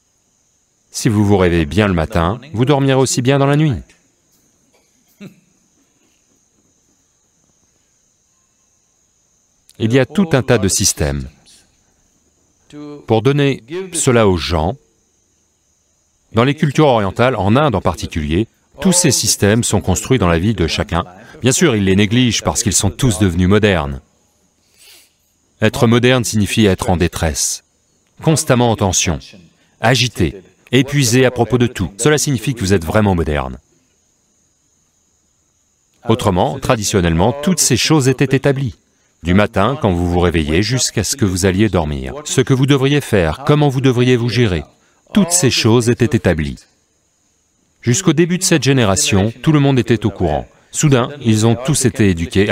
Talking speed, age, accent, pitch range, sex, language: 145 wpm, 40-59, French, 90-130 Hz, male, English